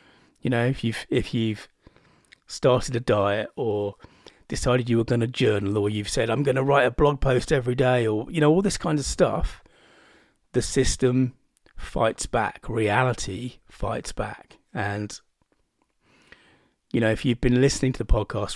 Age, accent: 30-49, British